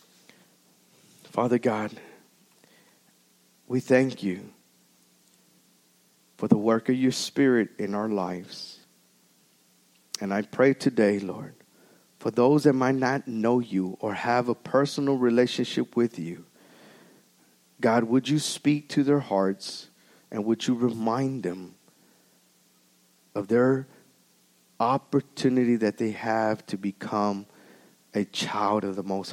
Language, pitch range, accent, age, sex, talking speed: English, 105-150 Hz, American, 50-69, male, 120 wpm